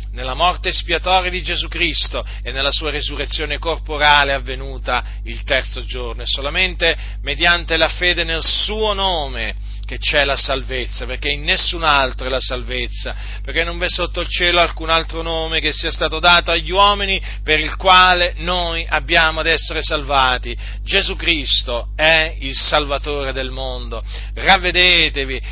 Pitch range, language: 120-165 Hz, Italian